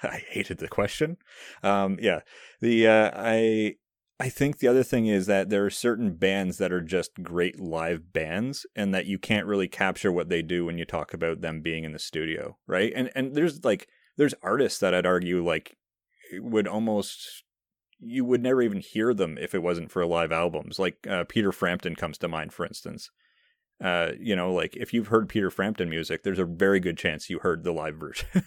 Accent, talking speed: American, 205 wpm